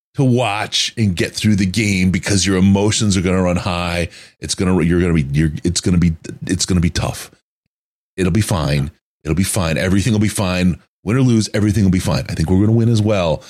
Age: 30-49